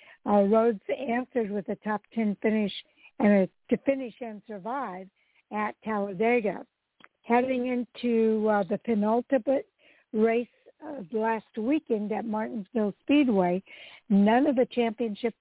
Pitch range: 205-245 Hz